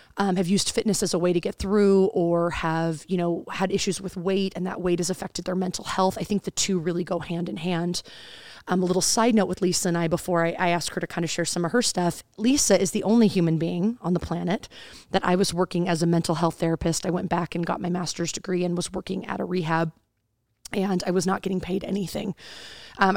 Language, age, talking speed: English, 30-49, 250 wpm